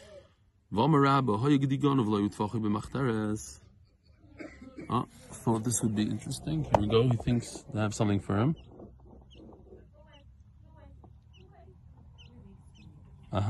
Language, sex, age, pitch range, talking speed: English, male, 30-49, 95-130 Hz, 80 wpm